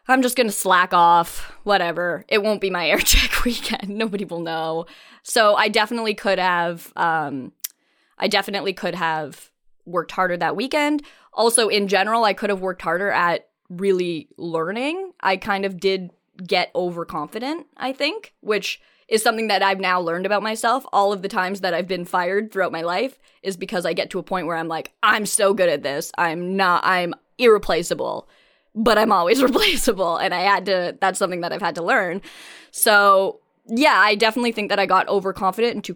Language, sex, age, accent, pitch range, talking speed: English, female, 20-39, American, 170-210 Hz, 190 wpm